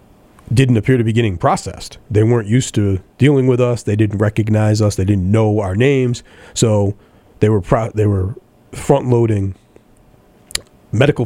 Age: 40-59